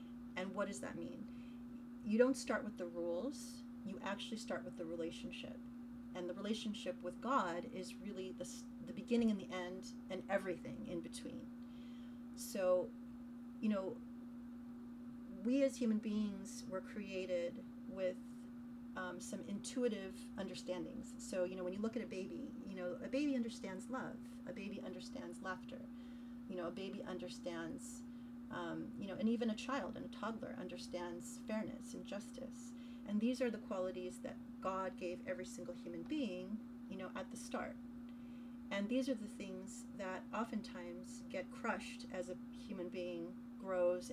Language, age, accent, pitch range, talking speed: English, 30-49, American, 225-250 Hz, 160 wpm